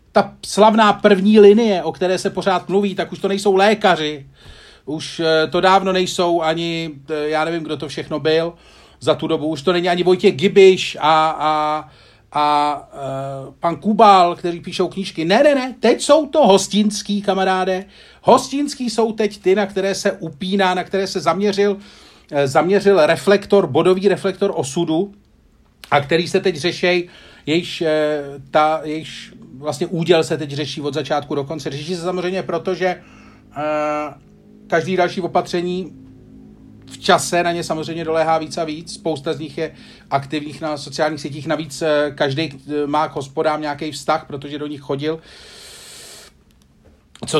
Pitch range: 155-200 Hz